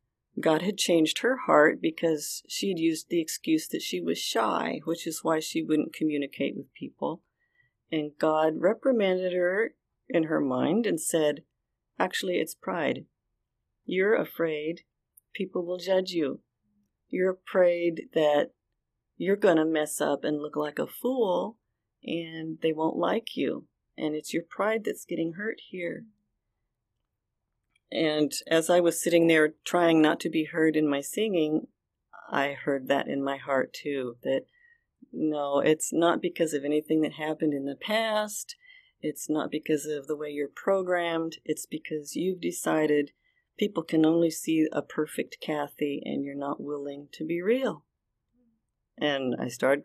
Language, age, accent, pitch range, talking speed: English, 40-59, American, 150-185 Hz, 155 wpm